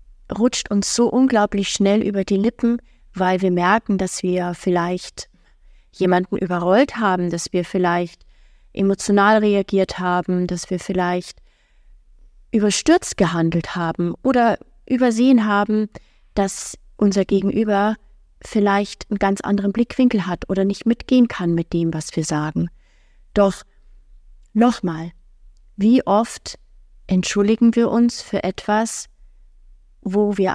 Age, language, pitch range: 30-49, German, 170-215 Hz